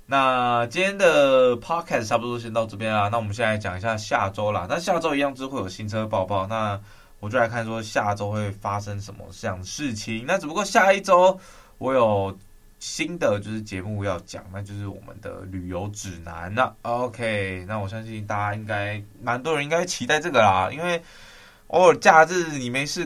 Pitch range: 95-125 Hz